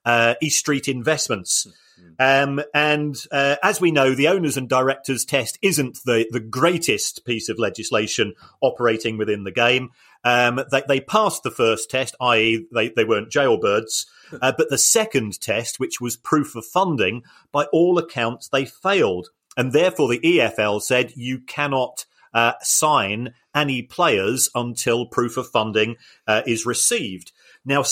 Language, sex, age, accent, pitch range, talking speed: English, male, 40-59, British, 115-150 Hz, 155 wpm